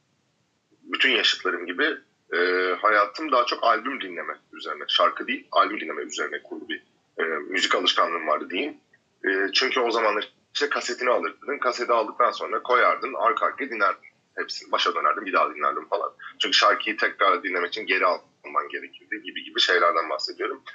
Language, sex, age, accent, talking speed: Turkish, male, 30-49, native, 155 wpm